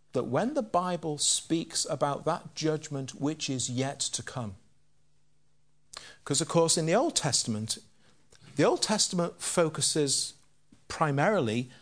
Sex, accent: male, British